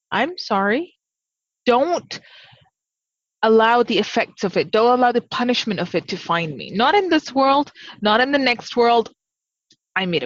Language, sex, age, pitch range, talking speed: English, female, 20-39, 185-245 Hz, 165 wpm